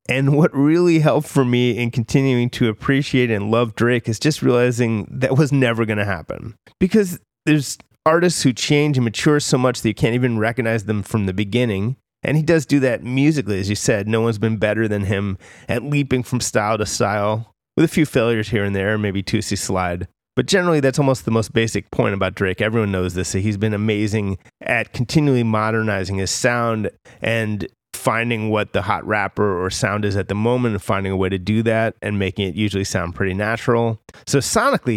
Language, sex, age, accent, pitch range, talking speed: English, male, 30-49, American, 105-135 Hz, 205 wpm